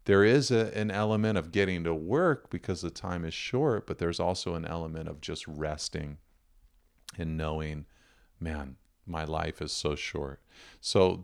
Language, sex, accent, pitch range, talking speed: English, male, American, 80-90 Hz, 160 wpm